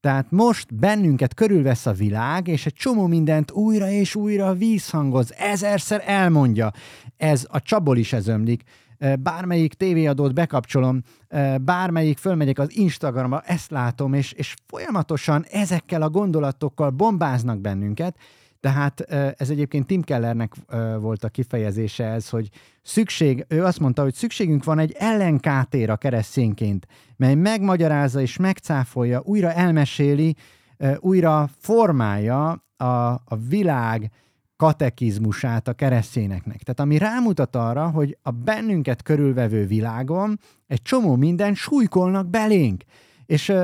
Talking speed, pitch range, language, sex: 120 wpm, 115-160 Hz, Hungarian, male